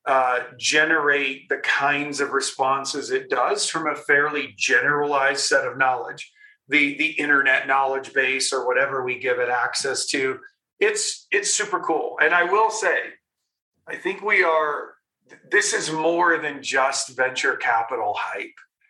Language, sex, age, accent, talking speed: English, male, 40-59, American, 150 wpm